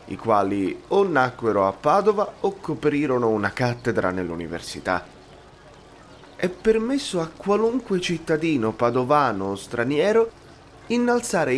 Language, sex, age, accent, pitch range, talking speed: Italian, male, 30-49, native, 120-185 Hz, 105 wpm